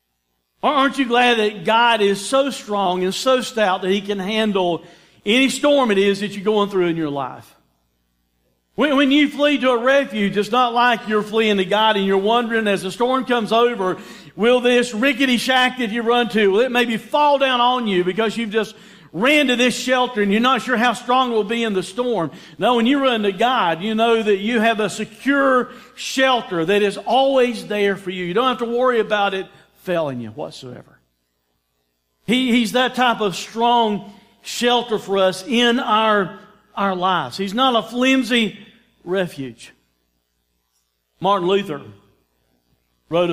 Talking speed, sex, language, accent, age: 185 wpm, male, English, American, 50-69